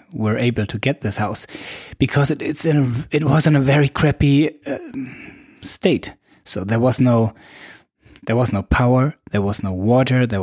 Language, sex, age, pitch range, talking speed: English, male, 20-39, 110-135 Hz, 180 wpm